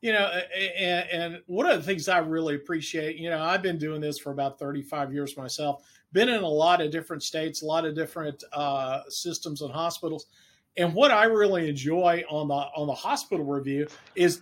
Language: English